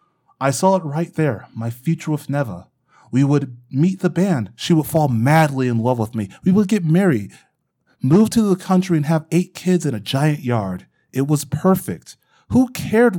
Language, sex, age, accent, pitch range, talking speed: English, male, 30-49, American, 125-180 Hz, 195 wpm